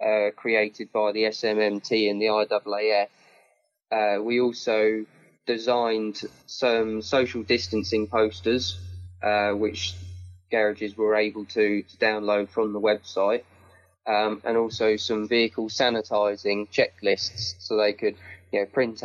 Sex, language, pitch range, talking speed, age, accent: male, English, 100-115 Hz, 125 wpm, 20-39, British